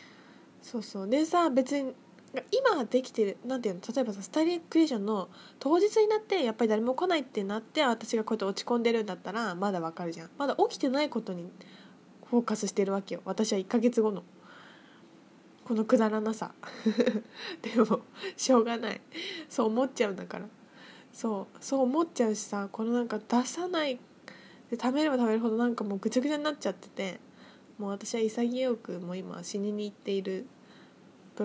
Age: 10-29